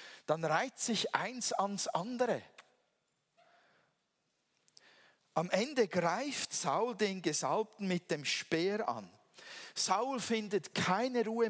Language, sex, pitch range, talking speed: German, male, 165-220 Hz, 105 wpm